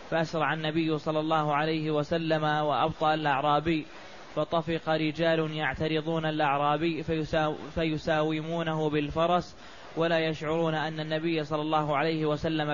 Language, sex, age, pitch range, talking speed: Arabic, male, 20-39, 155-165 Hz, 110 wpm